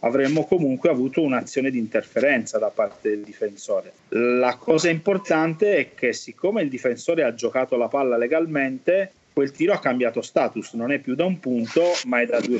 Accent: native